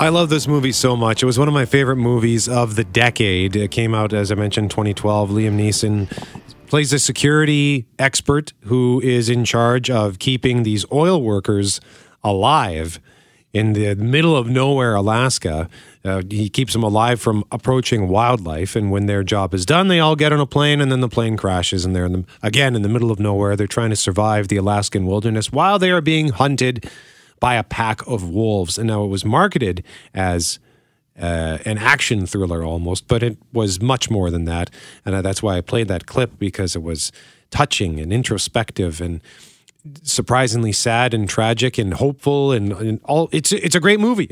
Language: English